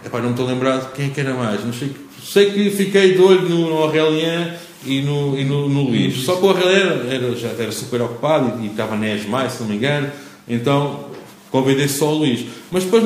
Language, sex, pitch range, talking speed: English, male, 125-150 Hz, 210 wpm